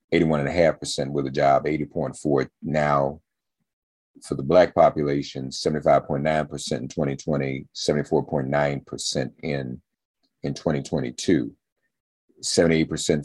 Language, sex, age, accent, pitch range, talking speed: English, male, 50-69, American, 75-90 Hz, 70 wpm